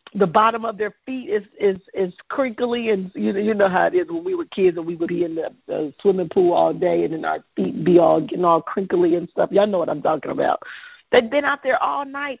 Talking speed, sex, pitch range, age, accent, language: 260 wpm, female, 205-265 Hz, 50-69, American, English